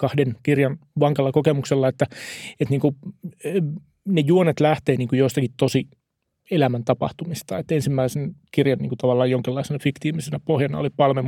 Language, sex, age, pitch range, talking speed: Finnish, male, 30-49, 130-155 Hz, 140 wpm